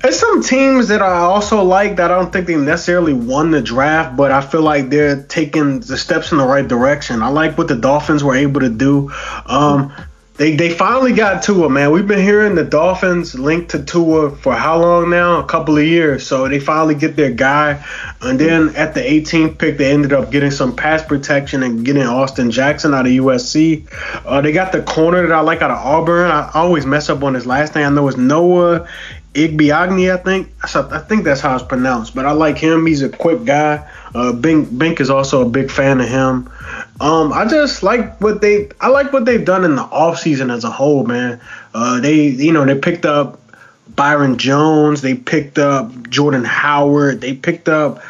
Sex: male